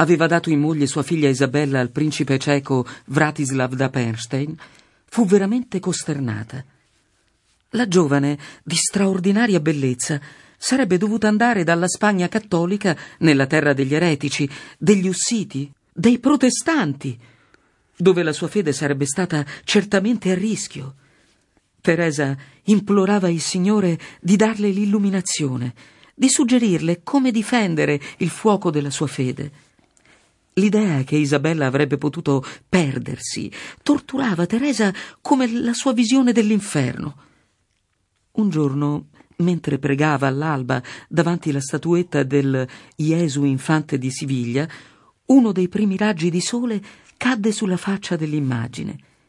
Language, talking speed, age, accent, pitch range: Italian, 120 wpm, 50-69, native, 140-200 Hz